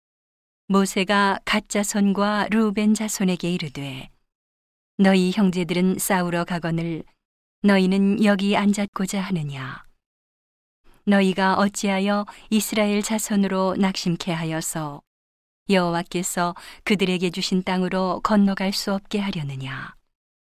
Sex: female